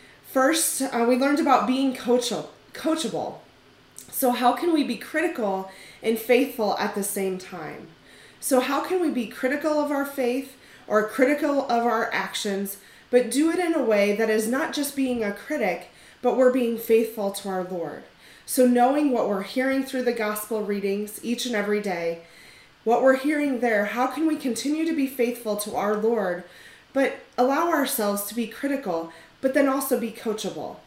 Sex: female